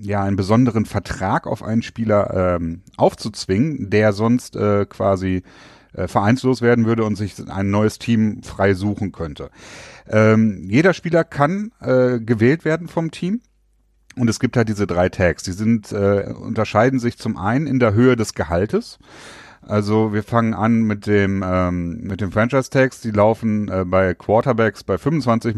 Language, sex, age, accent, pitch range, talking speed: German, male, 40-59, German, 95-115 Hz, 165 wpm